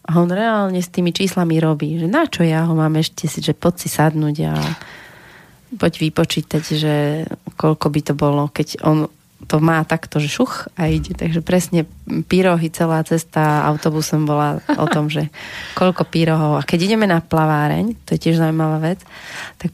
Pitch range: 155-180 Hz